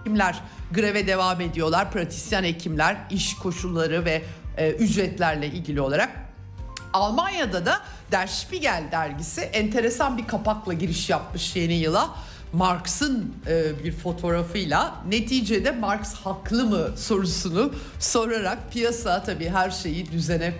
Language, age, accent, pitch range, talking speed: Turkish, 50-69, native, 165-220 Hz, 115 wpm